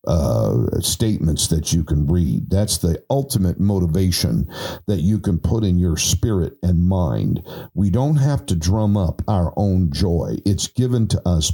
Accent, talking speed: American, 165 wpm